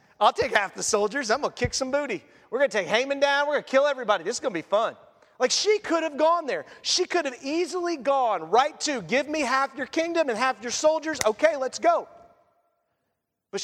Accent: American